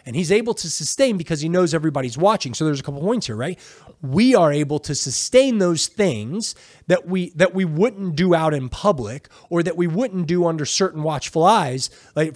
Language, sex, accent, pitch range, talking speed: English, male, American, 145-200 Hz, 210 wpm